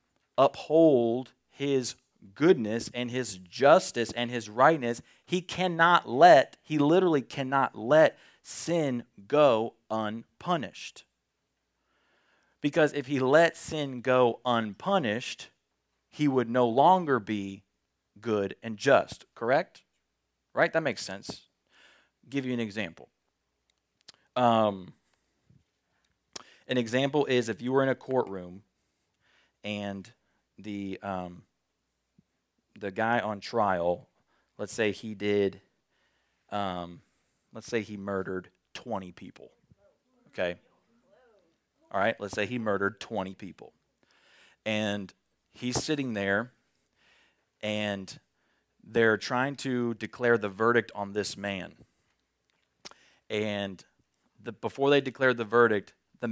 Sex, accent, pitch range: male, American, 100-130 Hz